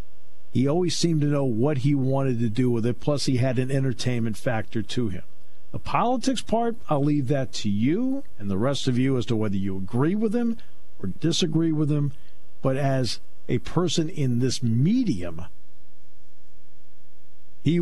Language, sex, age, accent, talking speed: English, male, 50-69, American, 175 wpm